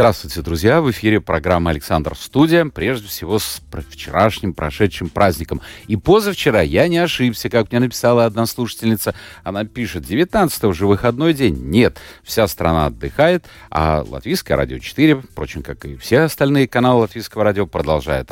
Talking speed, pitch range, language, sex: 150 wpm, 80-115 Hz, Russian, male